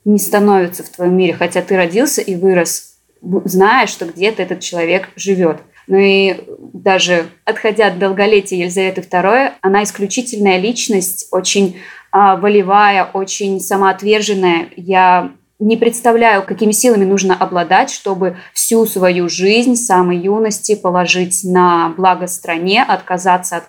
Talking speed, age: 130 wpm, 20-39